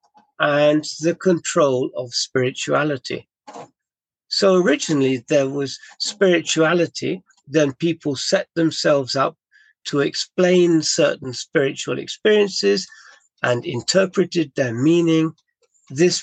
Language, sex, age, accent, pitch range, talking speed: English, male, 50-69, British, 140-180 Hz, 90 wpm